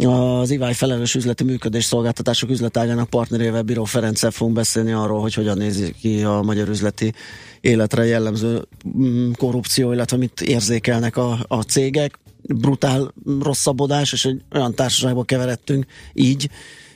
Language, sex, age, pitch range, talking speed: Hungarian, male, 30-49, 115-135 Hz, 130 wpm